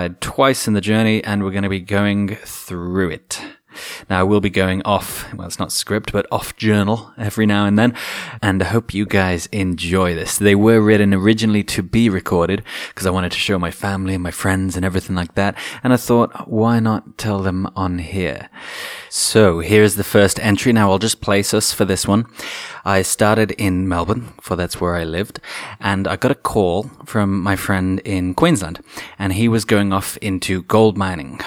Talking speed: 200 wpm